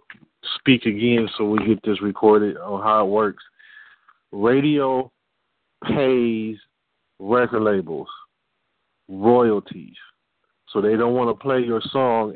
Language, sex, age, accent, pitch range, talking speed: English, male, 40-59, American, 105-115 Hz, 115 wpm